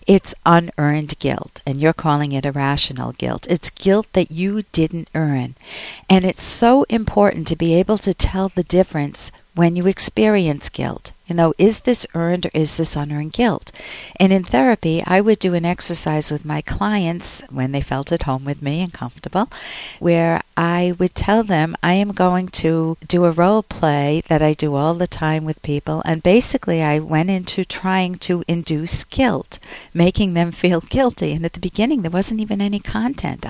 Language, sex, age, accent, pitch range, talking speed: English, female, 50-69, American, 150-190 Hz, 185 wpm